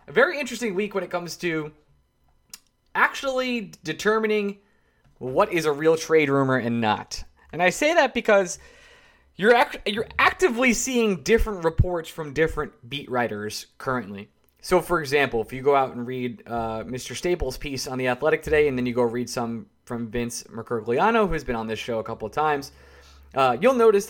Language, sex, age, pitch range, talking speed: English, male, 20-39, 120-180 Hz, 180 wpm